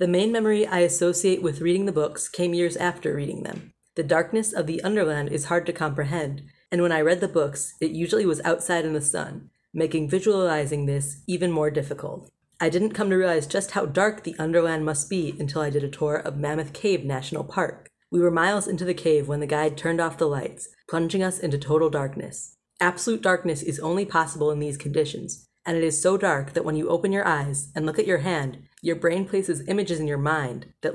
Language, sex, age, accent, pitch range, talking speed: English, female, 30-49, American, 150-180 Hz, 220 wpm